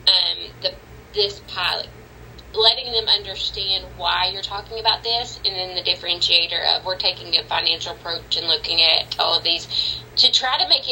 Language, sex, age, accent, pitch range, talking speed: English, female, 20-39, American, 175-235 Hz, 175 wpm